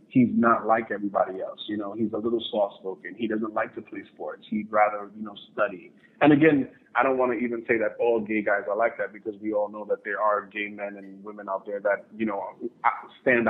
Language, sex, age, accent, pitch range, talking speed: English, male, 30-49, American, 105-120 Hz, 240 wpm